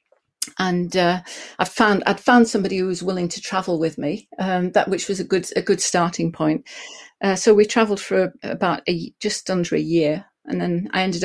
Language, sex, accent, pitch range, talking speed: English, female, British, 170-200 Hz, 205 wpm